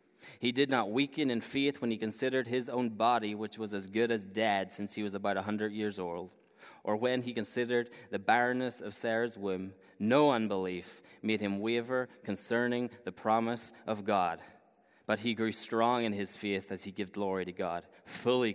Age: 20-39